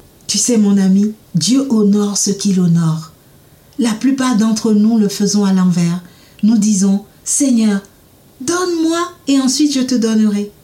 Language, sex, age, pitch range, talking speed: French, female, 50-69, 205-265 Hz, 150 wpm